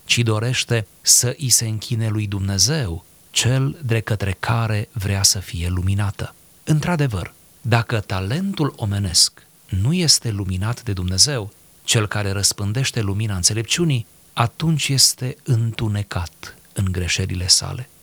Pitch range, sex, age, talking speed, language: 105-130 Hz, male, 30-49, 120 wpm, Romanian